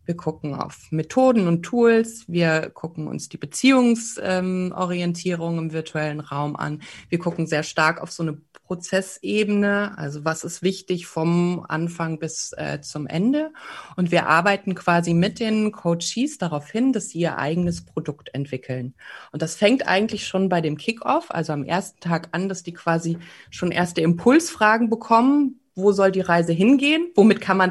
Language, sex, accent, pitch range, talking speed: German, female, German, 160-210 Hz, 165 wpm